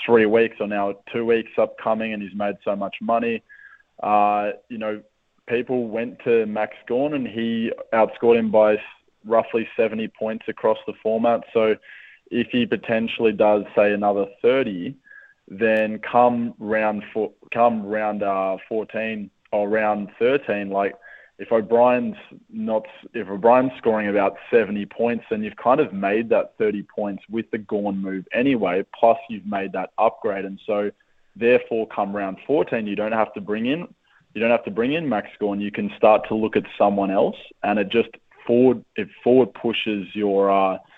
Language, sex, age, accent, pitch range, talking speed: English, male, 20-39, Australian, 100-115 Hz, 170 wpm